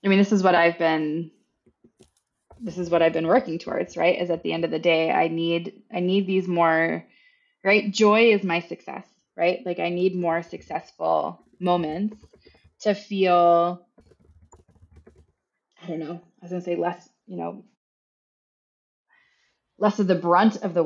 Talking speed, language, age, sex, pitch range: 165 wpm, English, 20-39, female, 175-200 Hz